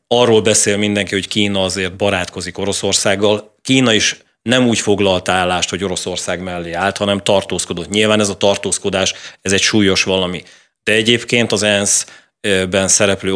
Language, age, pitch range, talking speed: Hungarian, 30-49, 95-110 Hz, 150 wpm